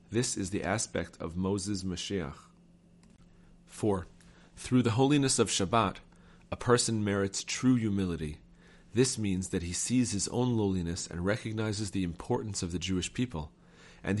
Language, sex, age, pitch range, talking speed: English, male, 40-59, 90-115 Hz, 150 wpm